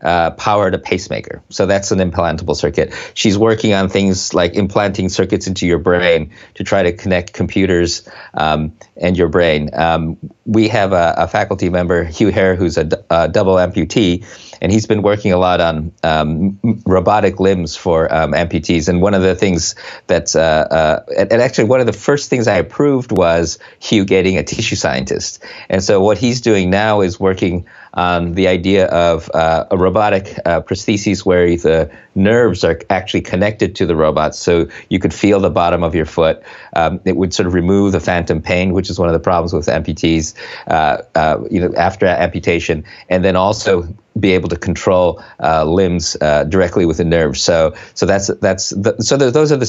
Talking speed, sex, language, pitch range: 195 wpm, male, English, 85-100 Hz